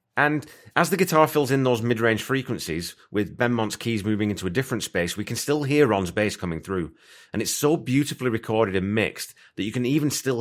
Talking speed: 215 wpm